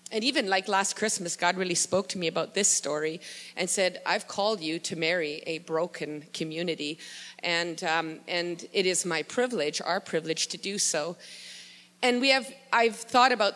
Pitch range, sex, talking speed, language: 180-230 Hz, female, 180 wpm, English